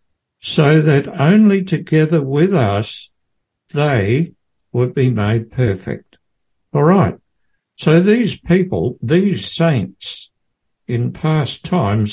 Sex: male